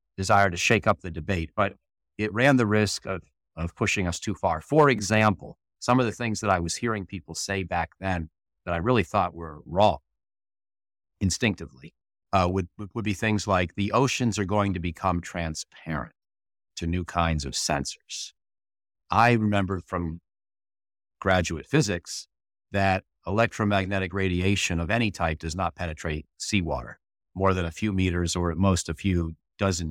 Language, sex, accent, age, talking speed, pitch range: English, male, American, 50-69, 165 wpm, 85-100 Hz